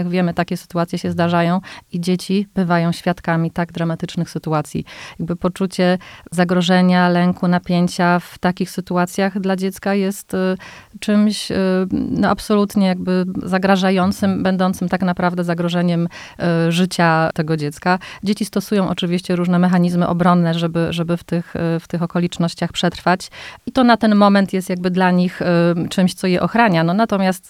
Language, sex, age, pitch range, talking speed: Polish, female, 30-49, 170-185 Hz, 150 wpm